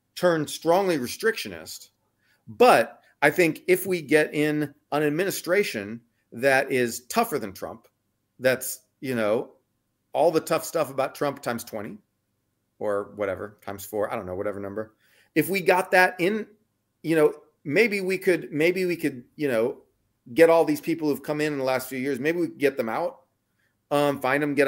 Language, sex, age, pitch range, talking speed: English, male, 40-59, 120-150 Hz, 180 wpm